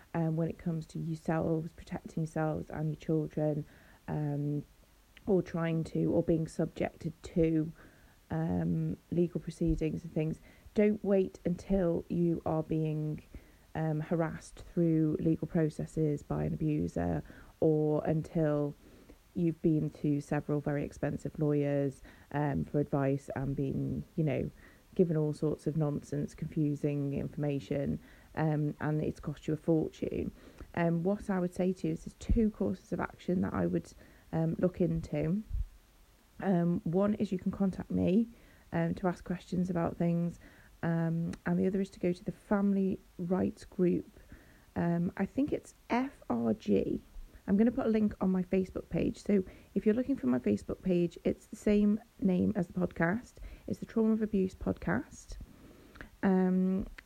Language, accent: English, British